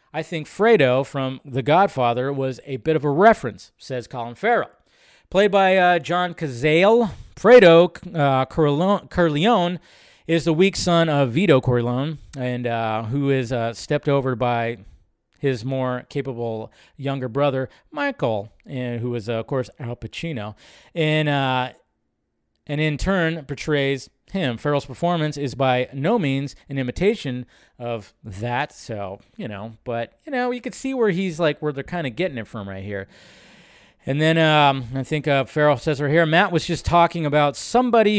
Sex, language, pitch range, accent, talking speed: male, English, 125-165 Hz, American, 165 wpm